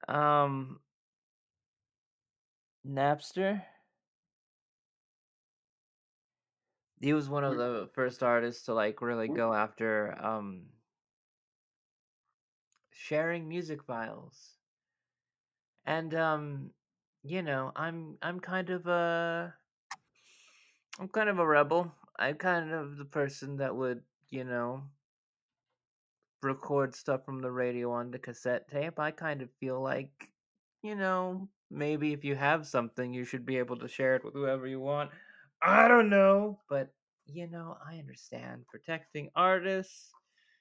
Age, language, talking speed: 20-39, English, 125 wpm